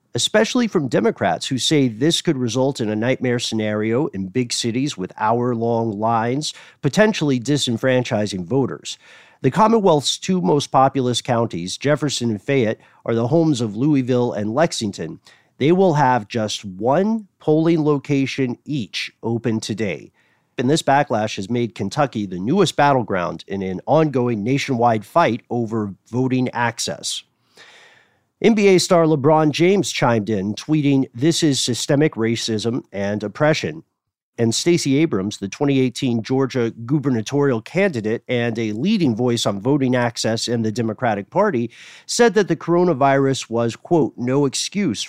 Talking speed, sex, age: 140 wpm, male, 40-59